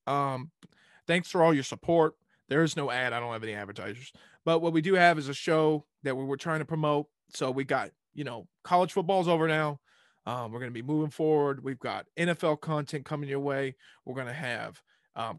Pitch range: 130-155 Hz